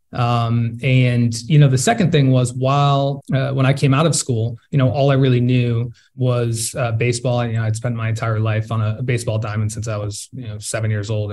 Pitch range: 120-140 Hz